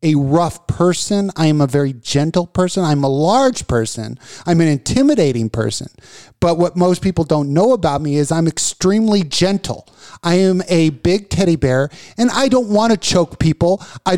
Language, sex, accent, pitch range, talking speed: English, male, American, 145-190 Hz, 180 wpm